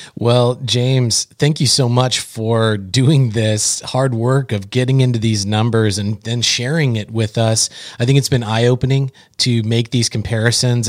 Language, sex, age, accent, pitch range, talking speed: English, male, 30-49, American, 110-130 Hz, 170 wpm